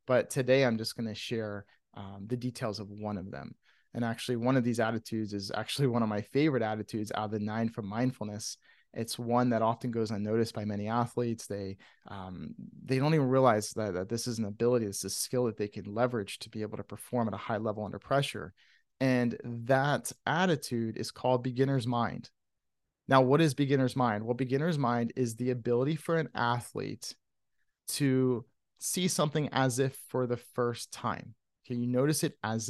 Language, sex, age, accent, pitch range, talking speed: English, male, 30-49, American, 115-145 Hz, 195 wpm